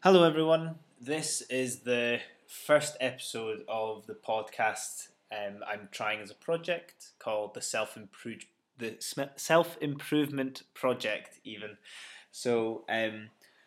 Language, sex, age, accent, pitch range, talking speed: English, male, 20-39, British, 110-140 Hz, 115 wpm